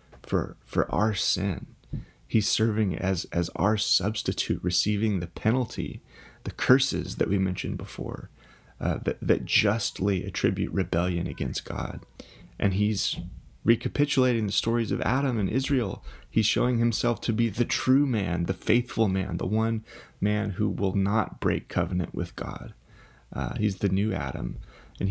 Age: 30-49